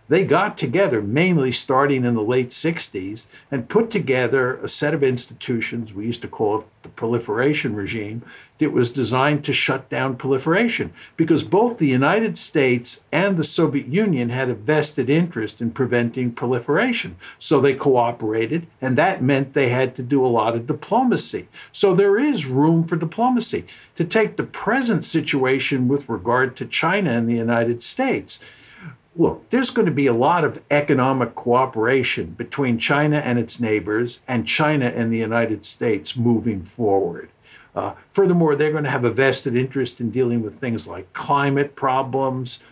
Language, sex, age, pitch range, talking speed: English, male, 60-79, 120-155 Hz, 165 wpm